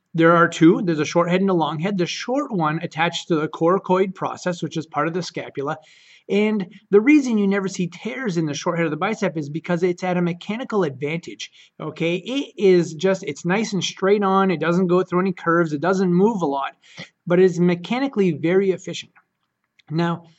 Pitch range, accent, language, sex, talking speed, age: 160-195 Hz, American, English, male, 215 wpm, 30-49